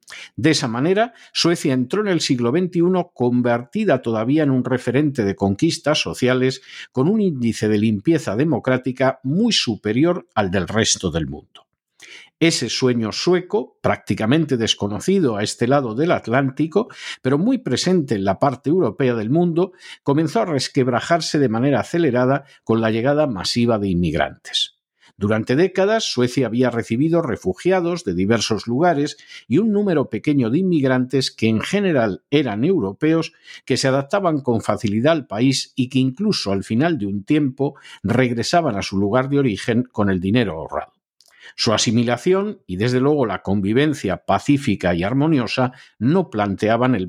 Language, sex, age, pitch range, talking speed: Spanish, male, 50-69, 110-160 Hz, 150 wpm